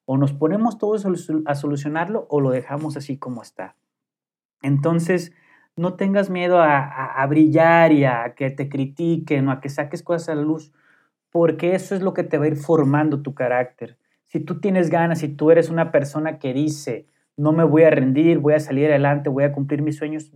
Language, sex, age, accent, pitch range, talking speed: Spanish, male, 30-49, Mexican, 140-165 Hz, 210 wpm